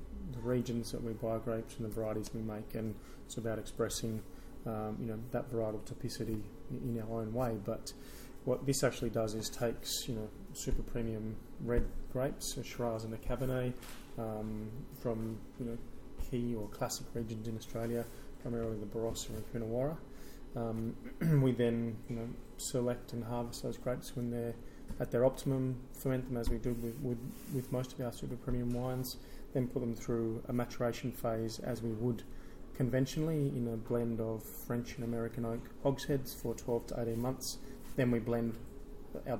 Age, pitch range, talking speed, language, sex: 30-49, 115-125 Hz, 180 wpm, English, male